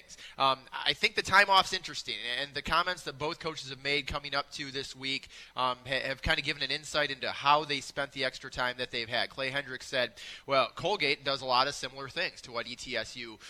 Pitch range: 125-160 Hz